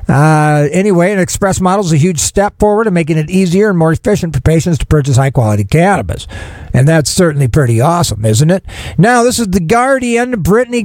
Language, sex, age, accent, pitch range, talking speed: English, male, 50-69, American, 160-205 Hz, 205 wpm